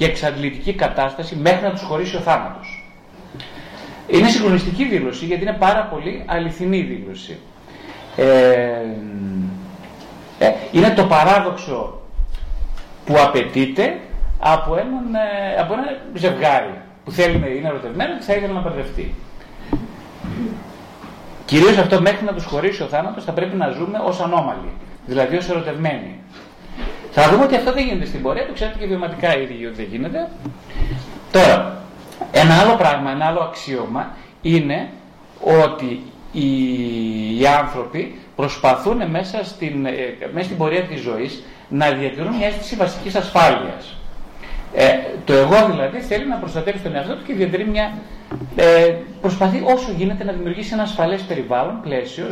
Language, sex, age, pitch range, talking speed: Greek, male, 30-49, 135-200 Hz, 135 wpm